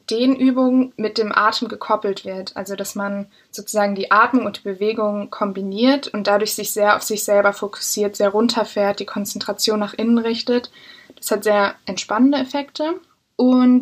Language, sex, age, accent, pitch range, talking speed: German, female, 20-39, German, 200-250 Hz, 160 wpm